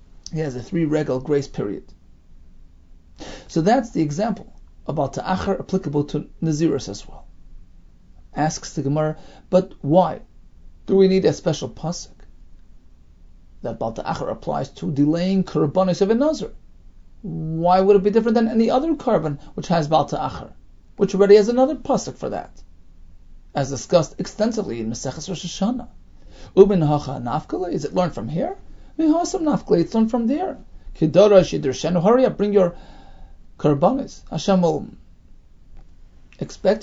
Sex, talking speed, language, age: male, 135 wpm, English, 40-59